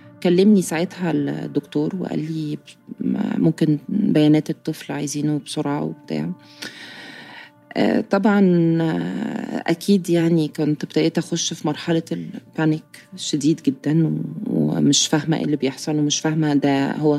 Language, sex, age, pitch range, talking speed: Arabic, female, 20-39, 150-190 Hz, 110 wpm